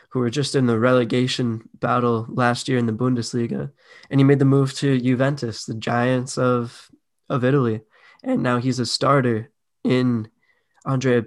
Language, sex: English, male